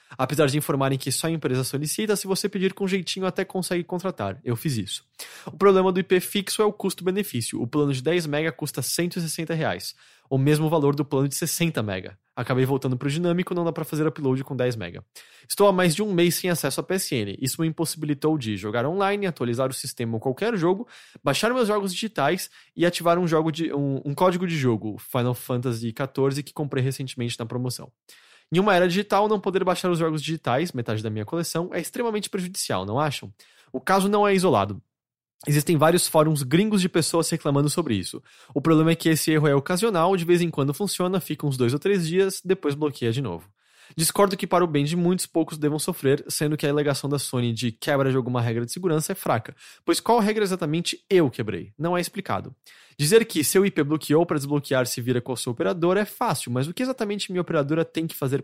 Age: 20-39